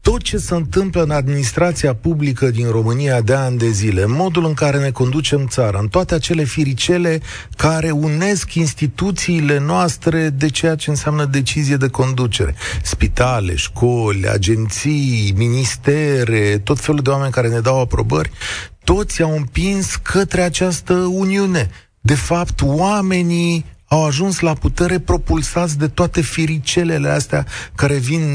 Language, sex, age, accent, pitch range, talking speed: Romanian, male, 40-59, native, 115-160 Hz, 140 wpm